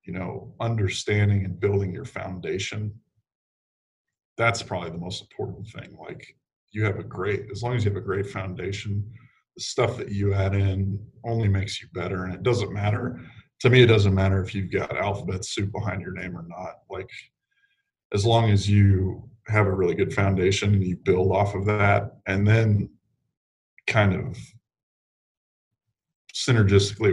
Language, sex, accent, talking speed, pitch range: English, male, American, 170 wpm, 95-110 Hz